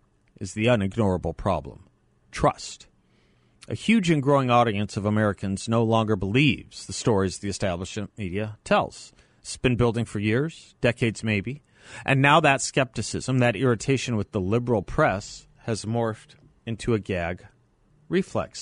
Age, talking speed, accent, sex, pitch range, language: 40-59, 140 wpm, American, male, 105-125 Hz, English